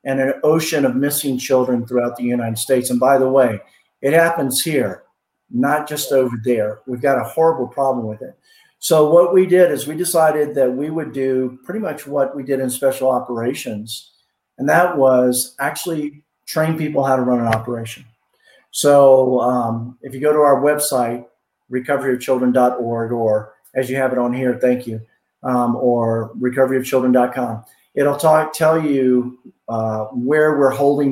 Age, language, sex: 50-69, English, male